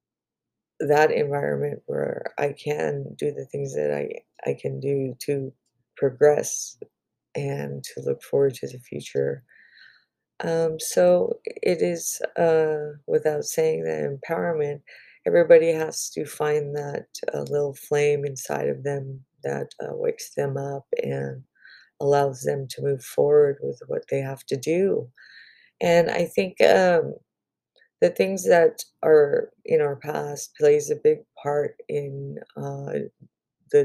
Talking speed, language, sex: 135 wpm, English, female